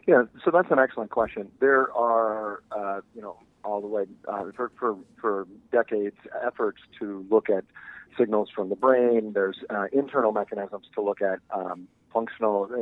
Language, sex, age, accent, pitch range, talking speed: English, male, 40-59, American, 100-120 Hz, 170 wpm